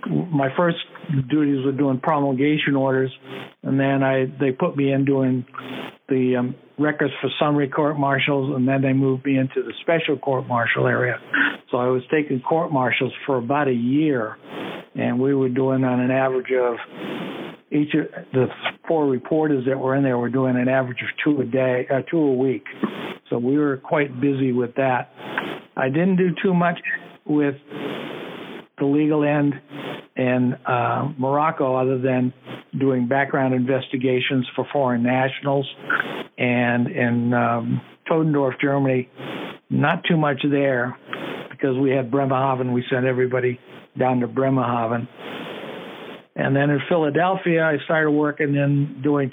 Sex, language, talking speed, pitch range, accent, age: male, English, 155 wpm, 130-145 Hz, American, 60-79